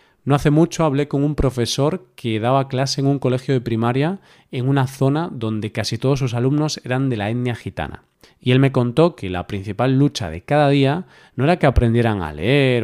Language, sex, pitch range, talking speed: Spanish, male, 115-140 Hz, 210 wpm